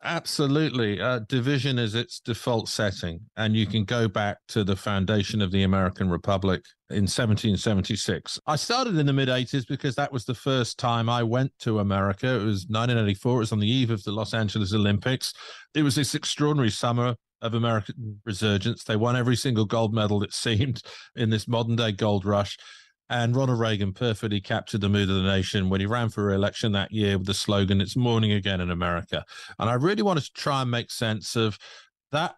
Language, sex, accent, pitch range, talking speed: English, male, British, 100-125 Hz, 200 wpm